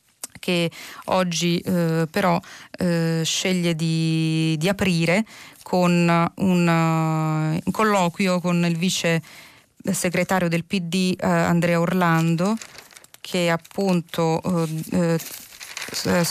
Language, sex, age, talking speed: Italian, female, 30-49, 90 wpm